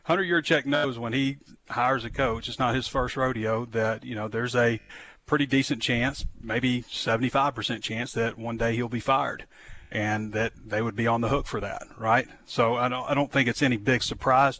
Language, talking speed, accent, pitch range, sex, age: English, 215 wpm, American, 110-125 Hz, male, 30-49